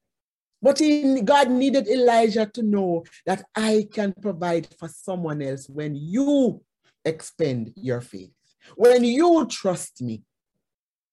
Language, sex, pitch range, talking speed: English, male, 180-250 Hz, 120 wpm